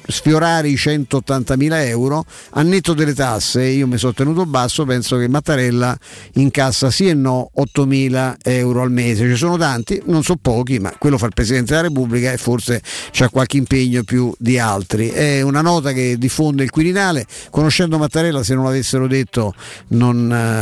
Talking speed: 170 wpm